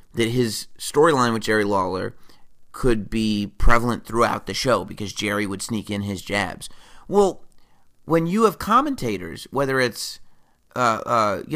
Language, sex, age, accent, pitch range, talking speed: English, male, 30-49, American, 110-150 Hz, 150 wpm